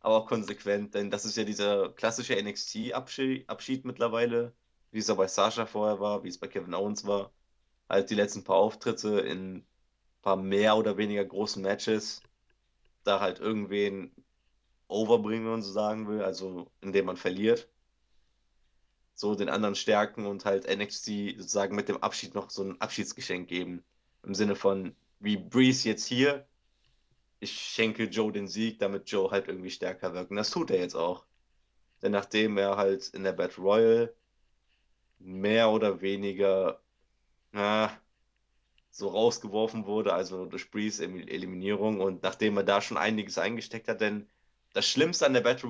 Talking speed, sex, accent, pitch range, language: 160 wpm, male, German, 95-110 Hz, German